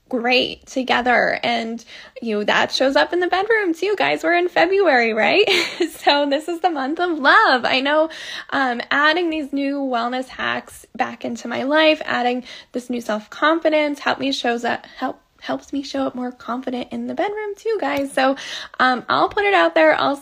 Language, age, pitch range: English, 10-29, 240-300 Hz